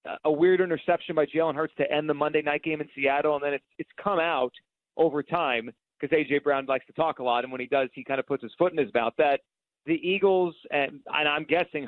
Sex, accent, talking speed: male, American, 255 wpm